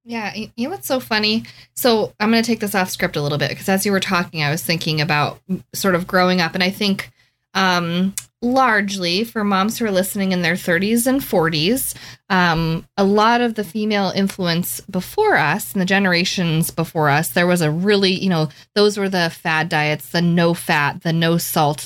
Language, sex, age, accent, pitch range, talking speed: English, female, 20-39, American, 160-195 Hz, 210 wpm